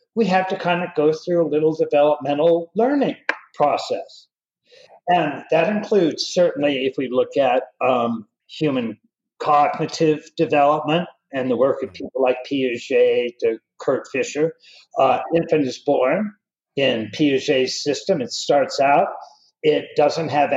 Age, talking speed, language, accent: 50-69, 135 wpm, English, American